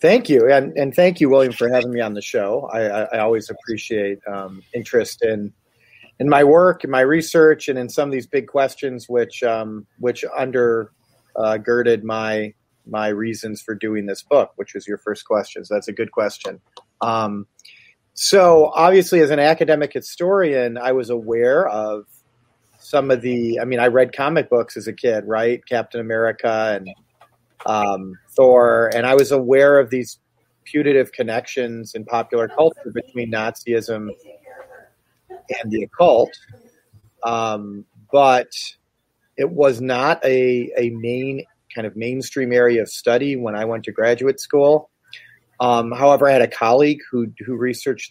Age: 30-49